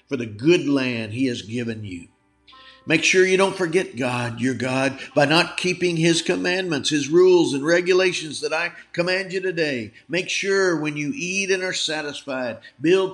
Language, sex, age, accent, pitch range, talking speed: English, male, 50-69, American, 130-180 Hz, 180 wpm